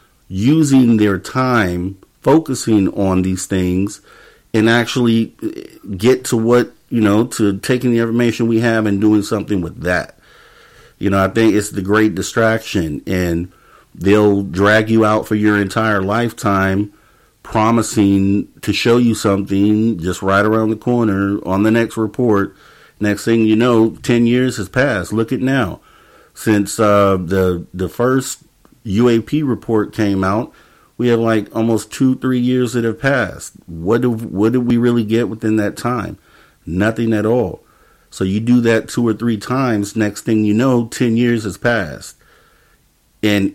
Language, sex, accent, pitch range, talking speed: English, male, American, 100-115 Hz, 160 wpm